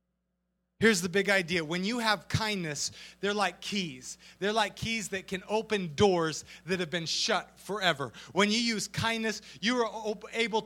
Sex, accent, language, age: male, American, English, 30-49